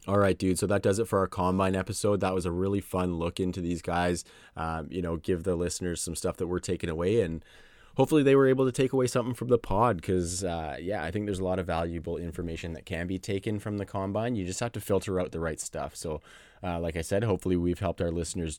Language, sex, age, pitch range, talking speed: English, male, 20-39, 90-105 Hz, 260 wpm